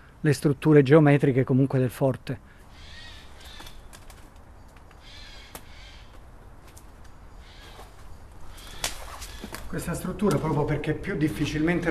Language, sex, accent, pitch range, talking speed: Italian, male, native, 130-160 Hz, 65 wpm